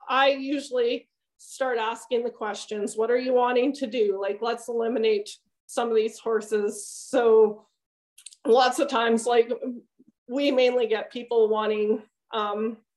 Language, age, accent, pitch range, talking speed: English, 20-39, American, 220-255 Hz, 140 wpm